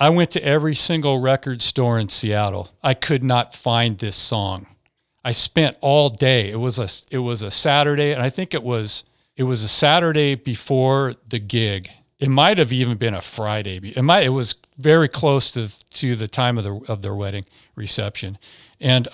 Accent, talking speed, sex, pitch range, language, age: American, 195 wpm, male, 110-140 Hz, English, 50-69